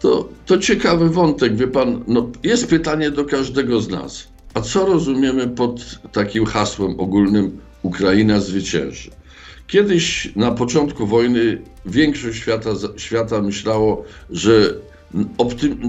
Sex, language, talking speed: male, Polish, 120 wpm